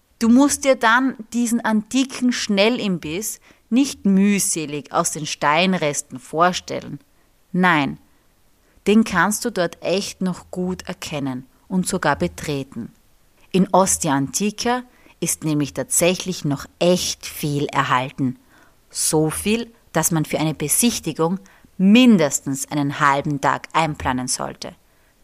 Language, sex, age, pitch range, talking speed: German, female, 30-49, 150-210 Hz, 115 wpm